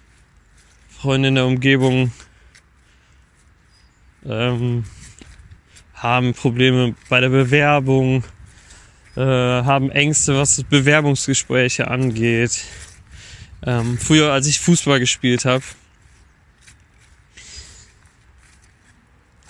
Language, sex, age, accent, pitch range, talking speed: German, male, 20-39, German, 100-160 Hz, 70 wpm